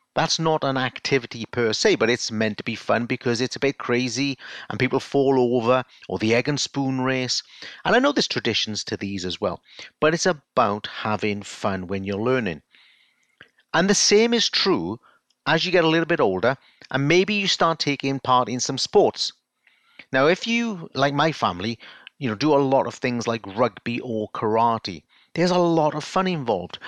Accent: British